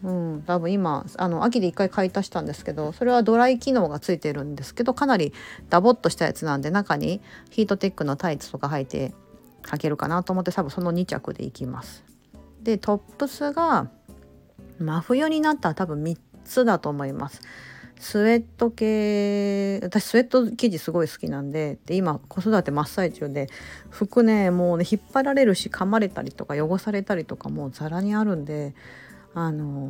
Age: 40-59